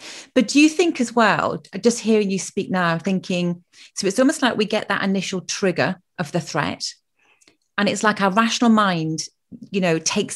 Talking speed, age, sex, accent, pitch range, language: 190 wpm, 30-49, female, British, 175-215 Hz, English